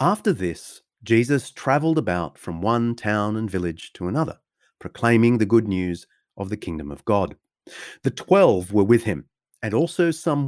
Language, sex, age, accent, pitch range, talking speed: English, male, 30-49, Australian, 90-130 Hz, 165 wpm